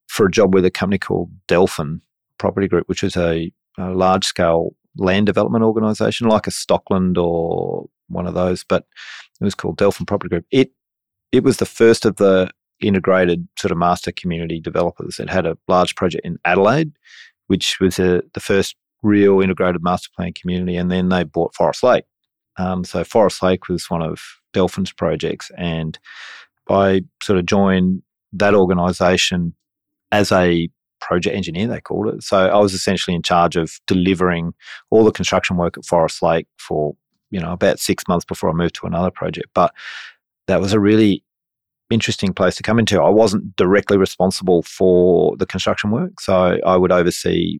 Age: 30-49